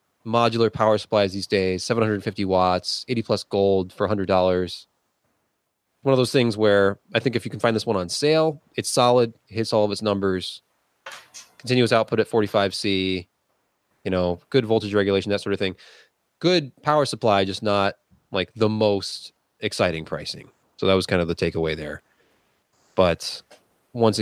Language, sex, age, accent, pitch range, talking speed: English, male, 20-39, American, 90-115 Hz, 175 wpm